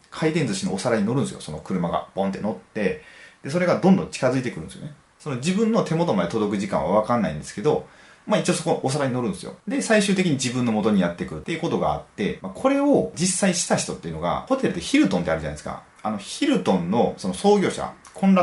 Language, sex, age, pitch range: Japanese, male, 30-49, 125-200 Hz